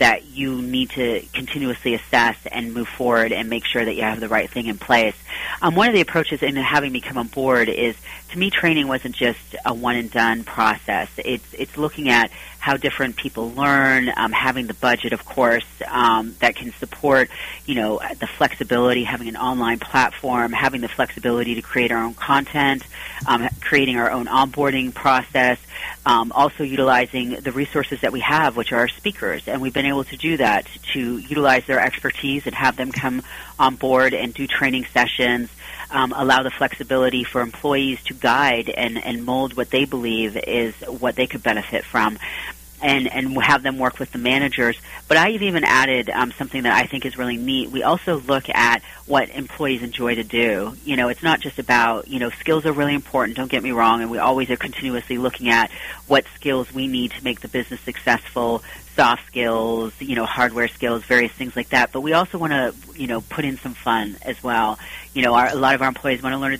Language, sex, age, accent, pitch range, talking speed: English, female, 30-49, American, 120-140 Hz, 205 wpm